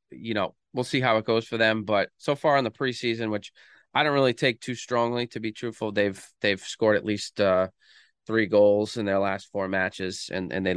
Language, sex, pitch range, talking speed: English, male, 100-125 Hz, 230 wpm